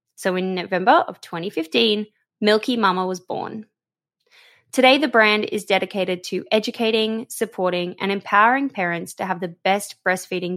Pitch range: 180-235 Hz